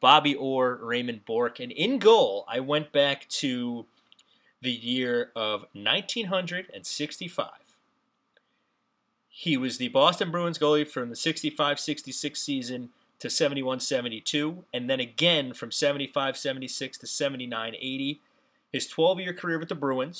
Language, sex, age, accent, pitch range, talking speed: English, male, 30-49, American, 115-160 Hz, 120 wpm